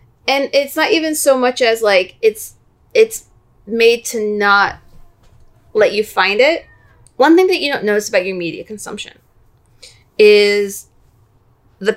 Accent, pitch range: American, 195-275 Hz